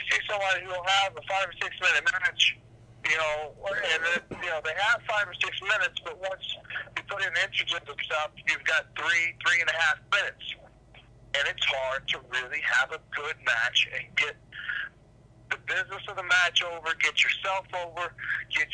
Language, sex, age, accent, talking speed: English, male, 50-69, American, 190 wpm